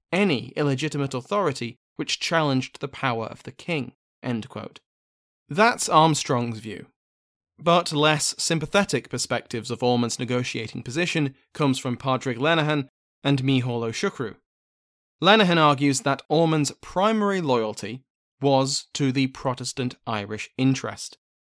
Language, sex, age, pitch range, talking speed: English, male, 20-39, 120-160 Hz, 120 wpm